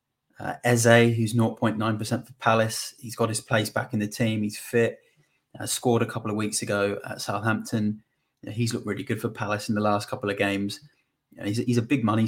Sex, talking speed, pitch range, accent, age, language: male, 230 wpm, 105-120 Hz, British, 20-39, English